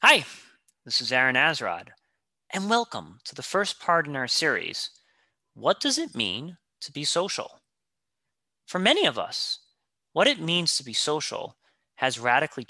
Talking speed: 155 wpm